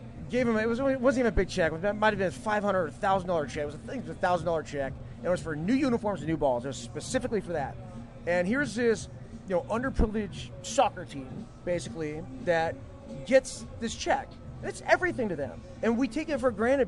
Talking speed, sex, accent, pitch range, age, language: 220 wpm, male, American, 150-195 Hz, 30-49, English